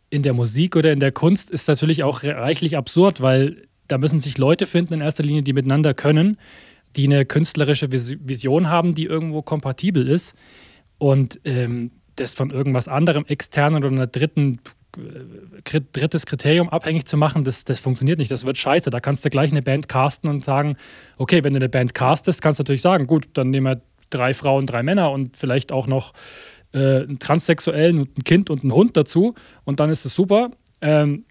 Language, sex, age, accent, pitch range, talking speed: German, male, 30-49, German, 130-155 Hz, 195 wpm